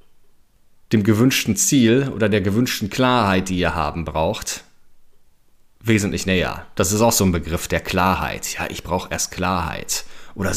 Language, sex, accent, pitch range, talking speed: German, male, German, 95-110 Hz, 155 wpm